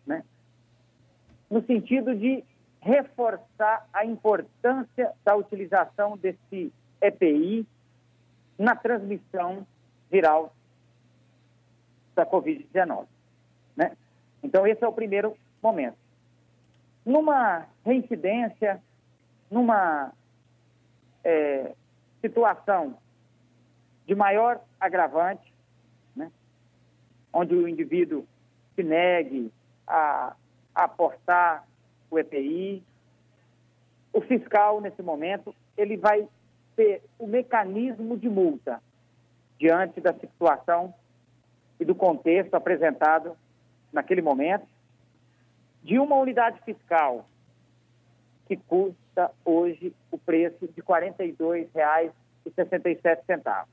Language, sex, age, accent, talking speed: Portuguese, male, 50-69, Brazilian, 80 wpm